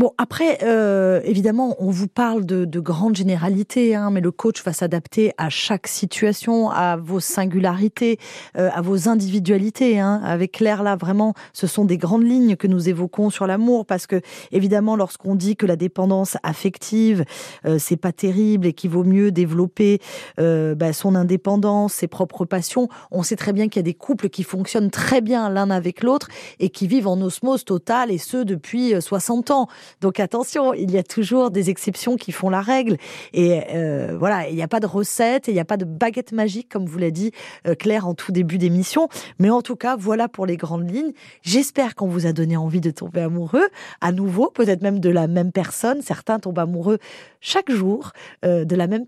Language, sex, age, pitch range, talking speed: French, female, 20-39, 175-220 Hz, 205 wpm